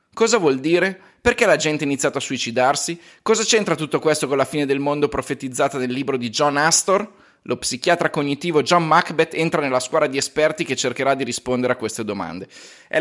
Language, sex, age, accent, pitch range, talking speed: Italian, male, 30-49, native, 145-190 Hz, 200 wpm